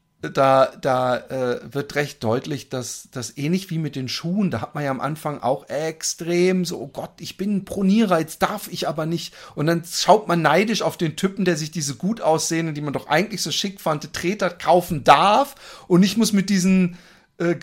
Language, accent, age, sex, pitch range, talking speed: German, German, 40-59, male, 135-180 Hz, 210 wpm